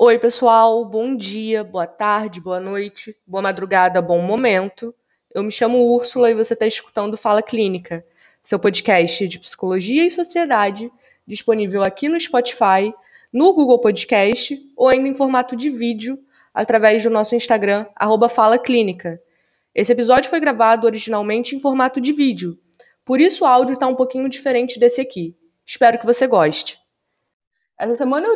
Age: 20-39